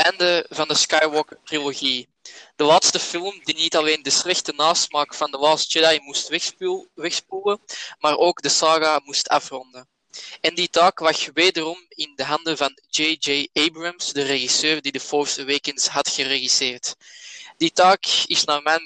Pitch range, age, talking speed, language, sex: 140-165 Hz, 20-39, 160 wpm, Dutch, male